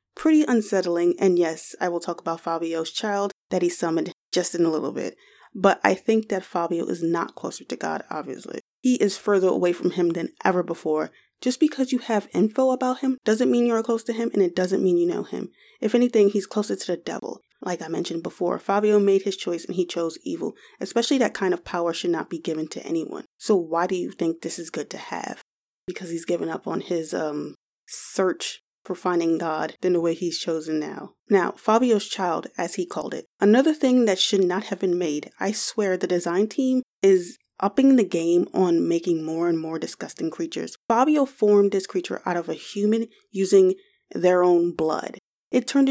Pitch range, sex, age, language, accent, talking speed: 175-225 Hz, female, 20-39, English, American, 210 wpm